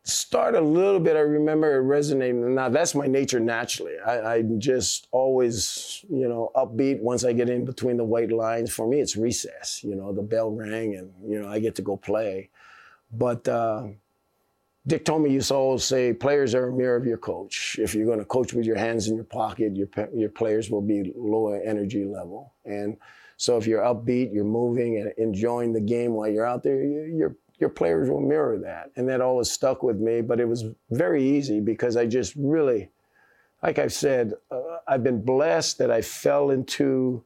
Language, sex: English, male